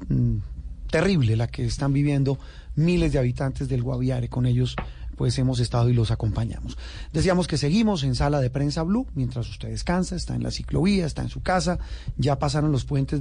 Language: Spanish